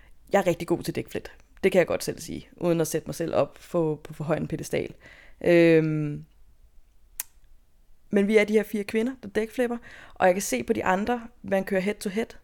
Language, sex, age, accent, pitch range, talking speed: Danish, female, 20-39, native, 160-200 Hz, 220 wpm